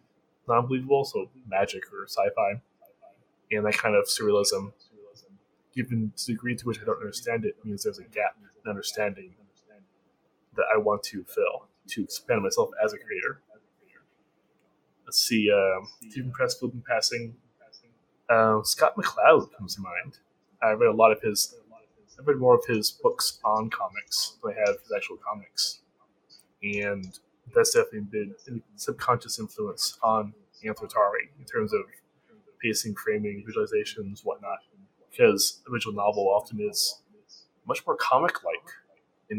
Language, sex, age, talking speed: English, male, 20-39, 150 wpm